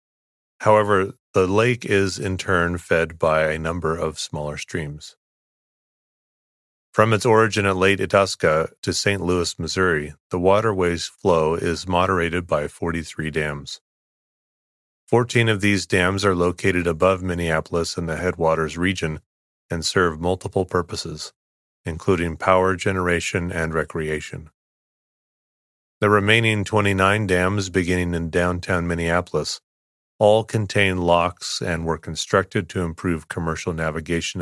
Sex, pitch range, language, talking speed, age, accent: male, 80-100 Hz, English, 120 wpm, 30-49, American